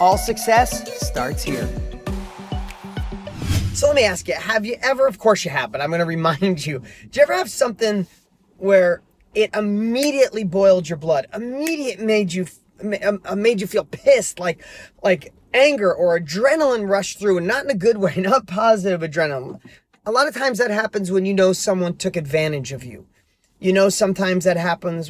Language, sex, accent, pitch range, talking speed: English, male, American, 175-220 Hz, 180 wpm